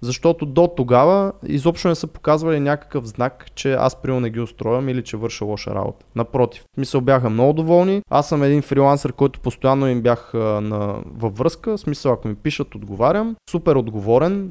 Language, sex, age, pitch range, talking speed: Bulgarian, male, 20-39, 115-145 Hz, 190 wpm